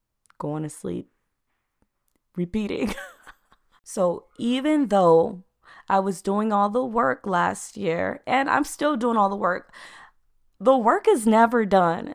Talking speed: 135 wpm